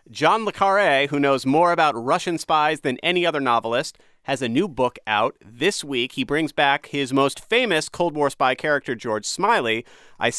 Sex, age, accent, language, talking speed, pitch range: male, 30-49, American, English, 190 wpm, 120-155 Hz